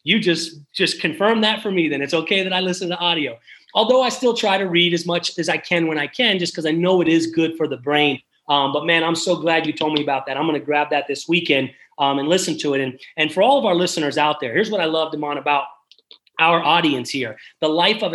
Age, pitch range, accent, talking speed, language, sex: 30-49, 150-185 Hz, American, 275 wpm, English, male